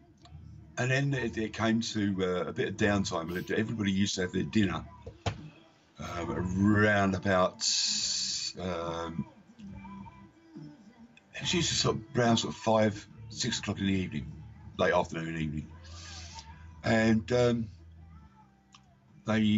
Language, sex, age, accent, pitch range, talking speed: English, male, 50-69, British, 80-105 Hz, 125 wpm